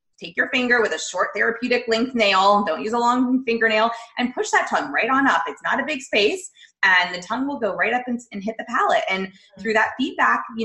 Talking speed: 240 wpm